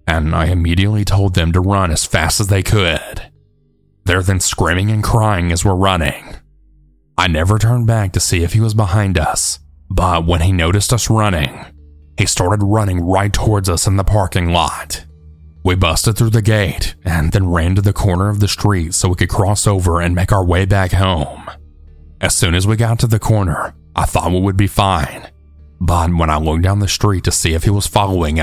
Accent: American